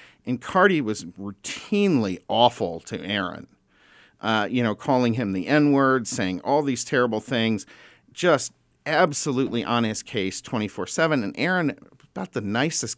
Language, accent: English, American